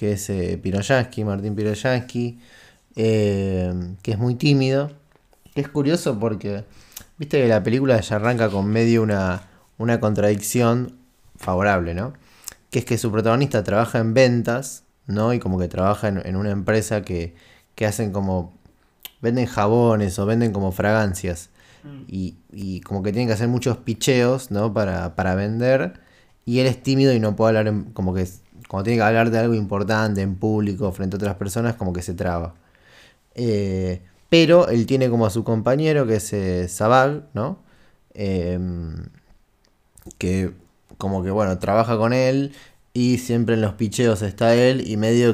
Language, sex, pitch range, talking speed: Spanish, male, 95-120 Hz, 165 wpm